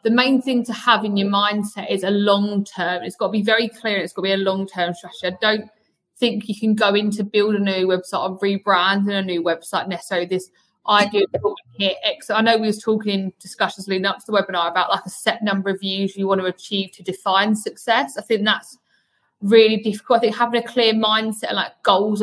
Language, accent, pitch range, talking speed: English, British, 195-220 Hz, 230 wpm